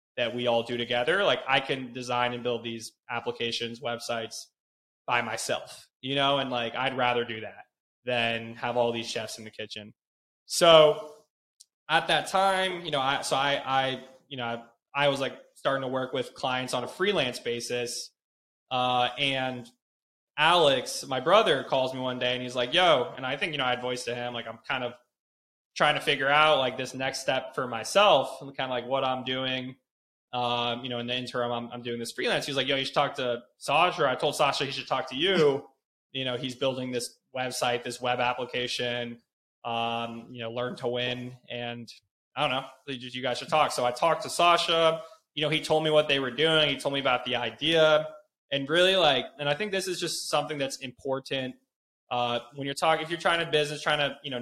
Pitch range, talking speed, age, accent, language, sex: 120-145 Hz, 215 wpm, 20-39, American, English, male